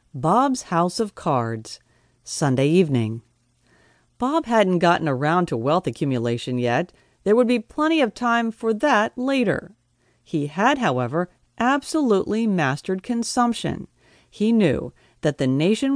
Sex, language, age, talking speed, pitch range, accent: female, English, 40-59, 130 wpm, 145-230 Hz, American